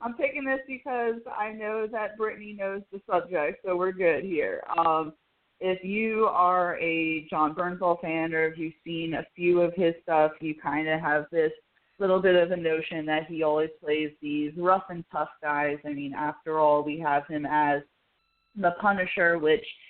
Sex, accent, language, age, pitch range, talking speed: female, American, English, 20-39, 155-180 Hz, 185 wpm